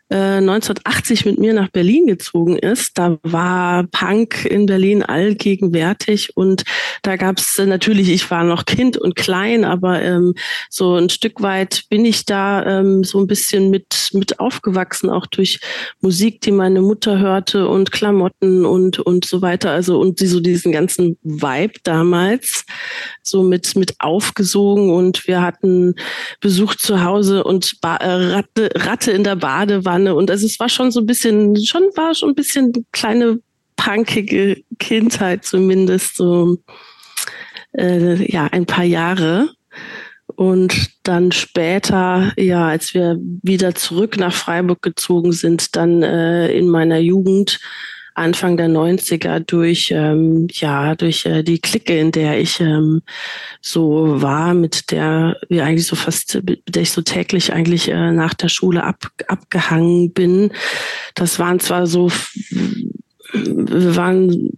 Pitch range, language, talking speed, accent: 175-205 Hz, German, 150 wpm, German